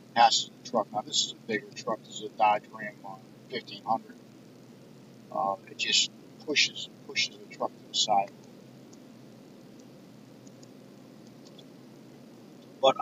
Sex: male